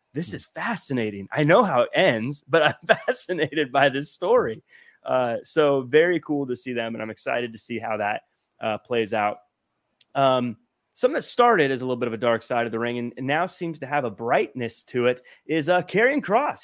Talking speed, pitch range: 215 wpm, 125-175 Hz